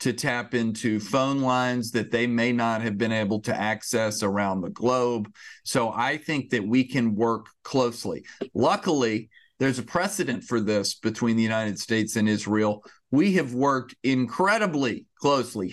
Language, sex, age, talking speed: English, male, 40-59, 160 wpm